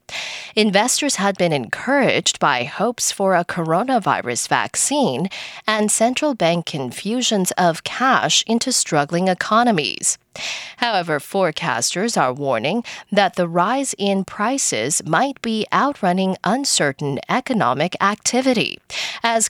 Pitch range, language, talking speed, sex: 170-245 Hz, English, 110 wpm, female